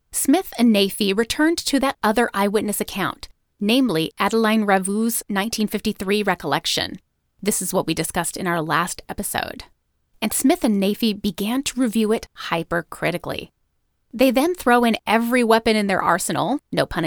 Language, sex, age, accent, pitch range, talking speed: English, female, 30-49, American, 185-240 Hz, 150 wpm